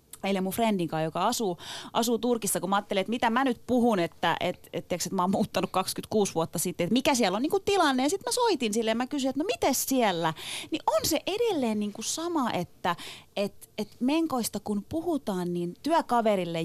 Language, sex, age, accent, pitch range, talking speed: Finnish, female, 30-49, native, 180-235 Hz, 205 wpm